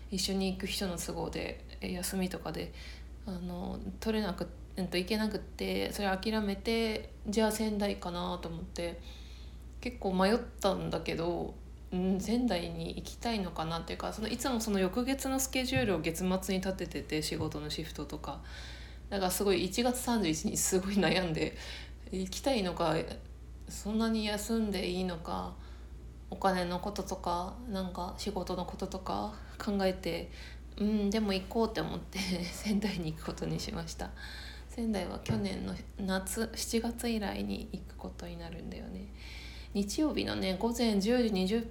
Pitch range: 155-210 Hz